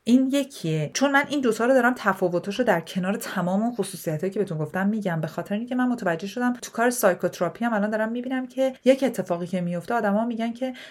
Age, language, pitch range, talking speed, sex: 40-59, Persian, 175-225 Hz, 210 wpm, female